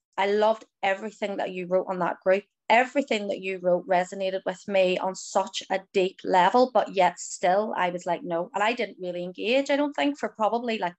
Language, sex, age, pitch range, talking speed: English, female, 20-39, 185-230 Hz, 215 wpm